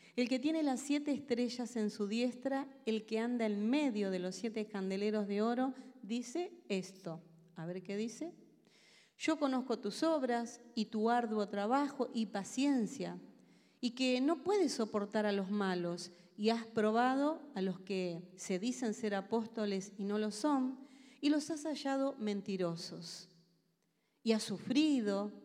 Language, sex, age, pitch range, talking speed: Spanish, female, 40-59, 200-270 Hz, 155 wpm